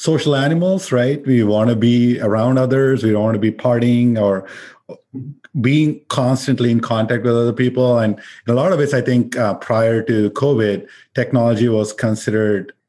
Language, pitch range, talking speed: English, 105-125 Hz, 175 wpm